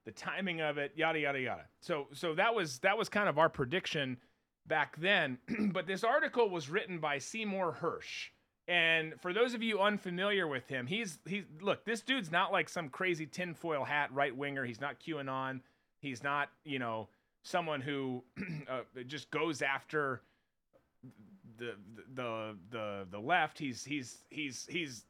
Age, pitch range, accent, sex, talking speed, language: 30-49, 135-180 Hz, American, male, 165 wpm, English